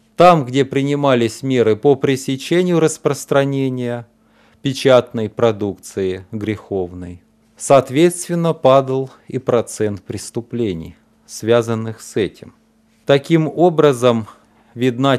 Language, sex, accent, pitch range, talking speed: Russian, male, native, 110-145 Hz, 85 wpm